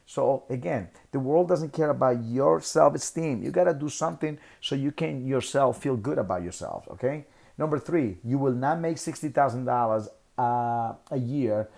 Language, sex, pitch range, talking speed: English, male, 105-140 Hz, 165 wpm